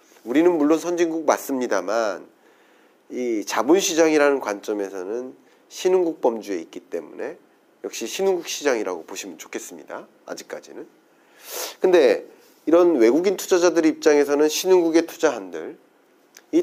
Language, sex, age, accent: Korean, male, 40-59, native